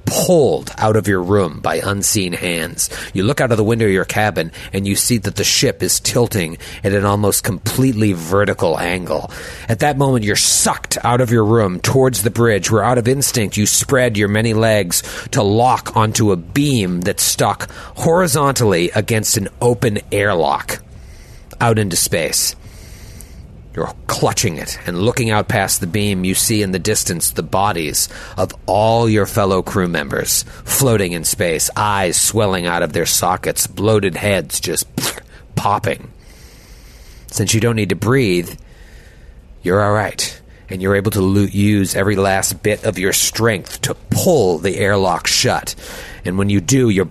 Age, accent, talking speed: 30-49, American, 170 wpm